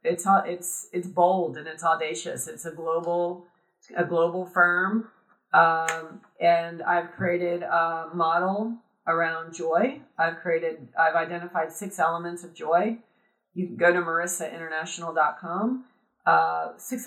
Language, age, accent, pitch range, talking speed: English, 40-59, American, 165-180 Hz, 125 wpm